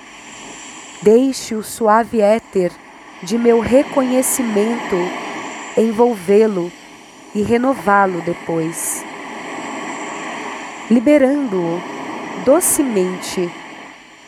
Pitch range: 190-250 Hz